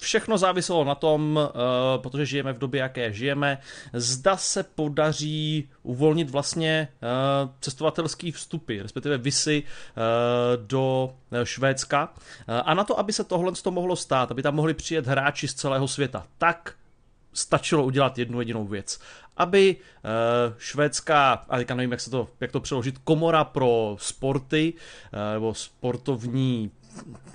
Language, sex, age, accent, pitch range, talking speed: Czech, male, 30-49, native, 120-150 Hz, 140 wpm